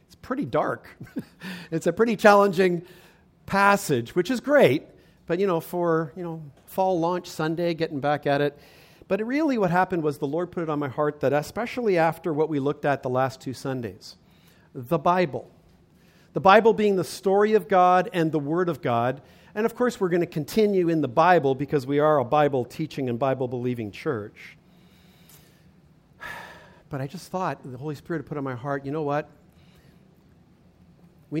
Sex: male